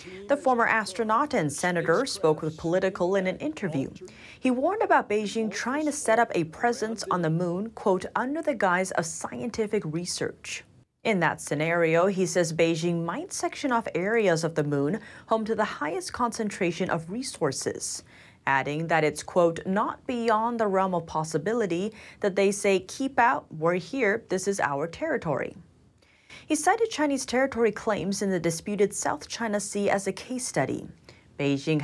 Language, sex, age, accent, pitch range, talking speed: English, female, 30-49, American, 165-225 Hz, 165 wpm